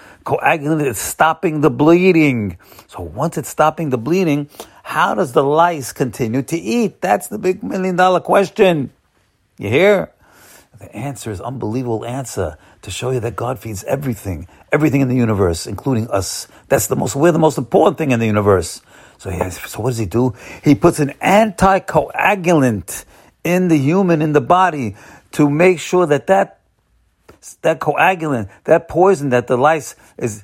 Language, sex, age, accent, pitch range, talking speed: English, male, 50-69, American, 115-165 Hz, 170 wpm